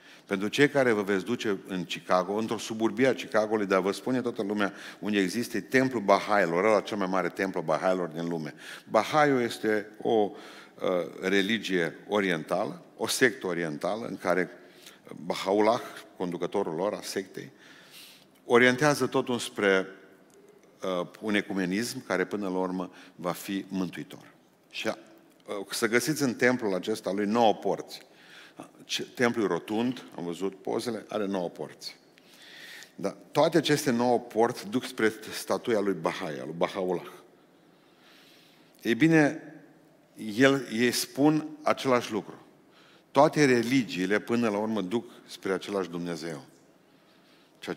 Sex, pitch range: male, 95-120 Hz